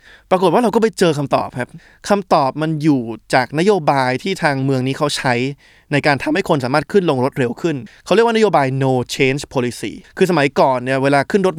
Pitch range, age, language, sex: 130-175 Hz, 20-39, Thai, male